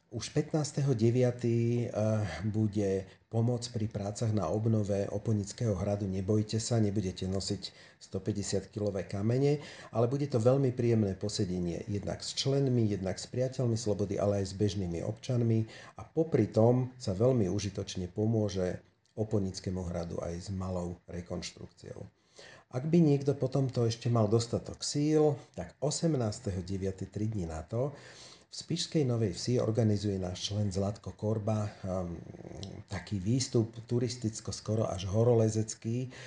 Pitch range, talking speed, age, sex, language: 100-120 Hz, 130 wpm, 40-59, male, Slovak